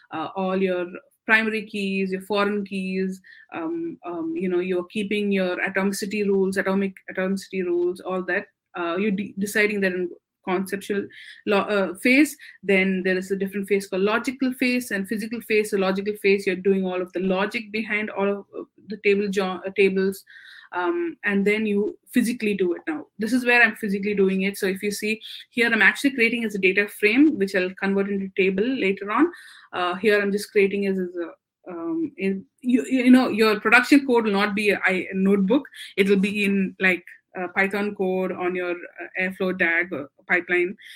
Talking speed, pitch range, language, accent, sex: 190 wpm, 190-215 Hz, English, Indian, female